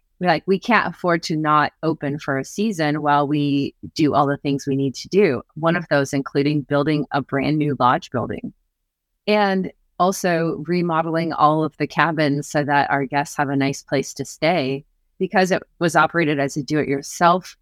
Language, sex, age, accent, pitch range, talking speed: English, female, 30-49, American, 140-165 Hz, 185 wpm